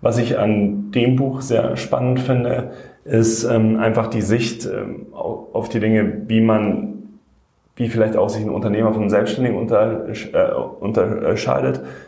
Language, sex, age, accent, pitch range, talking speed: German, male, 20-39, German, 100-120 Hz, 155 wpm